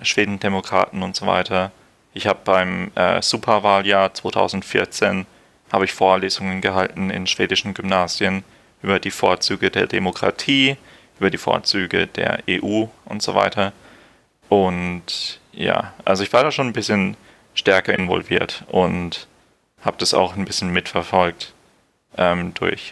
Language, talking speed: German, 125 wpm